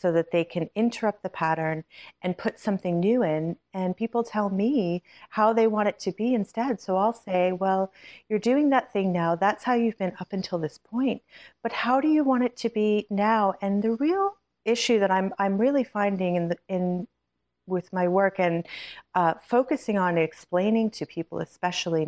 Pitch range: 180-225 Hz